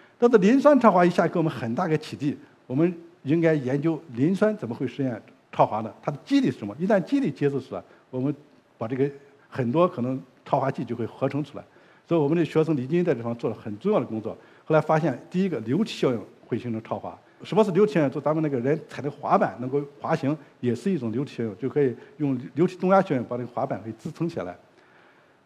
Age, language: 50-69, Chinese